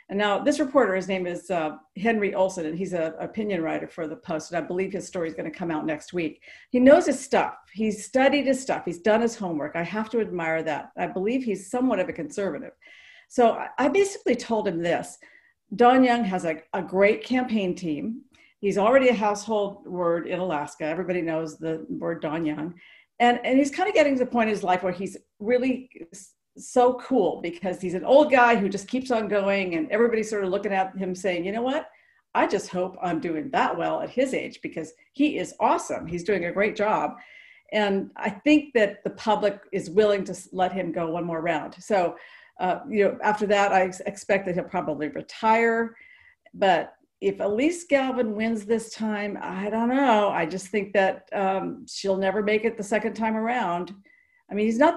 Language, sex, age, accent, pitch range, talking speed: English, female, 50-69, American, 180-245 Hz, 210 wpm